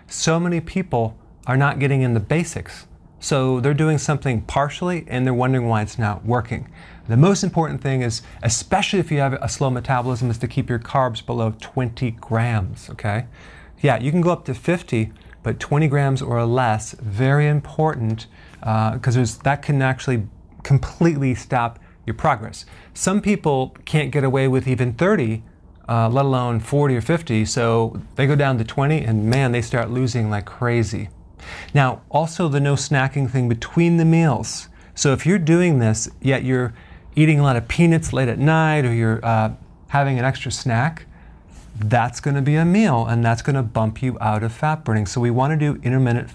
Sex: male